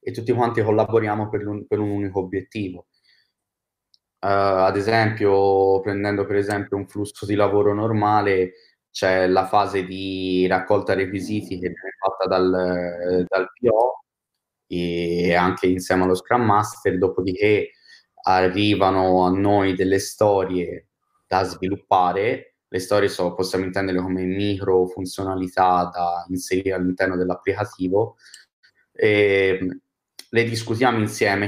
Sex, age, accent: male, 20-39, native